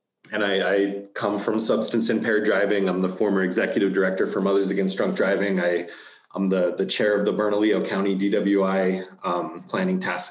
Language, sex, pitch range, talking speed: English, male, 95-115 Hz, 180 wpm